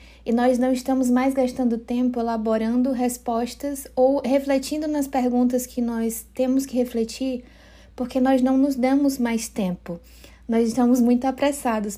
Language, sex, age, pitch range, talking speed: Portuguese, female, 20-39, 220-255 Hz, 145 wpm